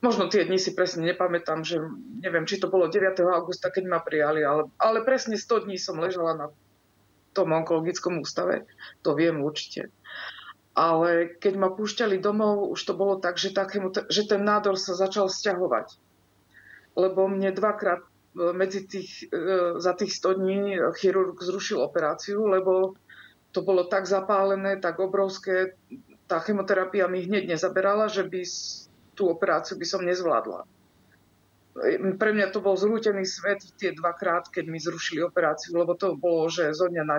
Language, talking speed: Slovak, 155 wpm